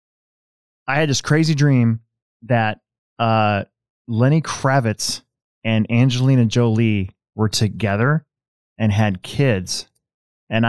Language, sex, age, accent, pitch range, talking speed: English, male, 20-39, American, 110-130 Hz, 100 wpm